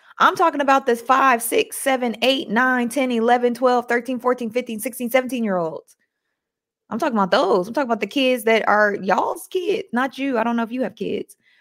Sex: female